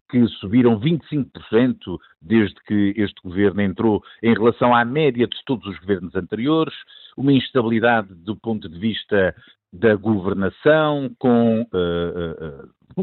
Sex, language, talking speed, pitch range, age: male, Portuguese, 125 wpm, 100-150 Hz, 50-69